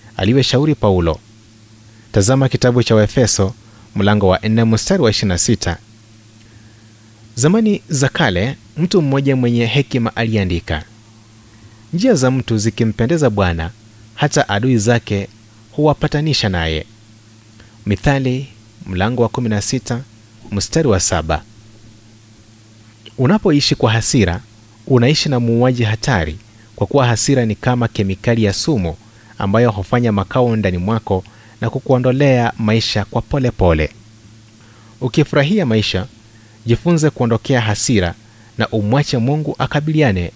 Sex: male